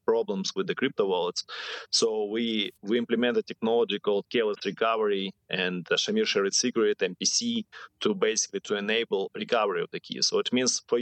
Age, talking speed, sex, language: 30-49, 175 wpm, male, English